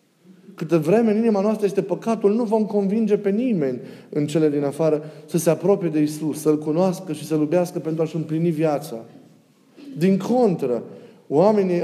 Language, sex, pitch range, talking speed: Romanian, male, 150-195 Hz, 160 wpm